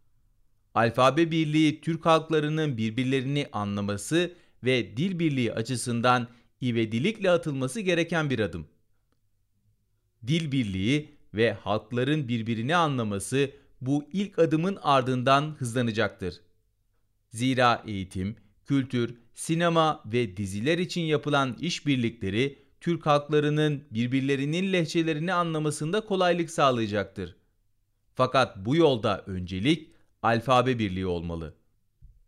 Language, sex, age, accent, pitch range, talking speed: Turkish, male, 40-59, native, 110-165 Hz, 90 wpm